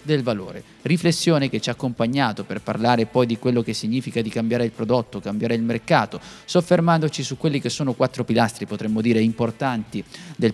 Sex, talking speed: male, 180 wpm